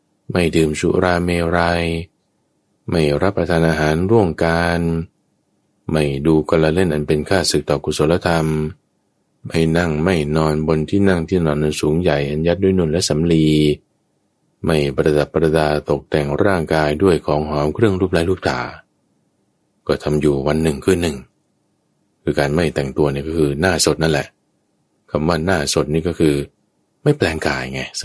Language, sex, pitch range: Thai, male, 75-90 Hz